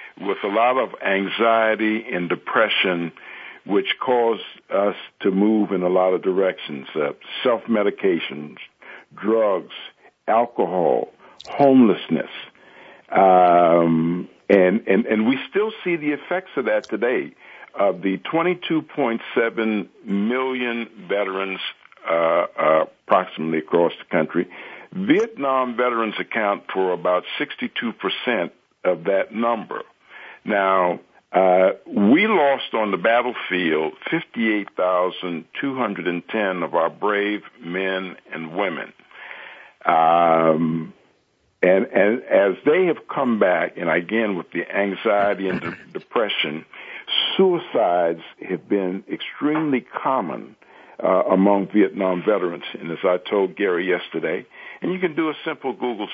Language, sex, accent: English, male, American